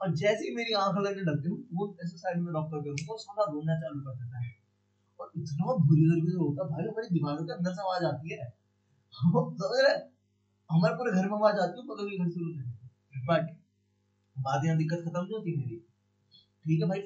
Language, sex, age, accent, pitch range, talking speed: Hindi, male, 20-39, native, 150-200 Hz, 40 wpm